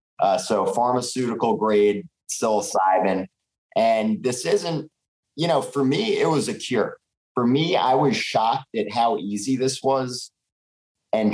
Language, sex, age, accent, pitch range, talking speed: English, male, 30-49, American, 100-130 Hz, 145 wpm